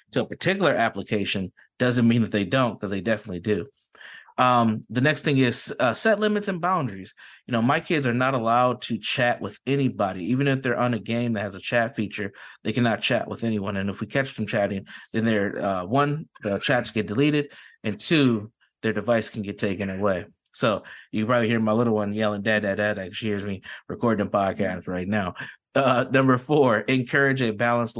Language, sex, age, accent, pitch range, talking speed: English, male, 30-49, American, 105-130 Hz, 205 wpm